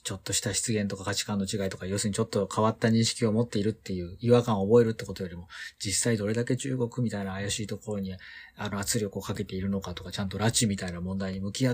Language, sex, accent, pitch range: Japanese, male, native, 95-125 Hz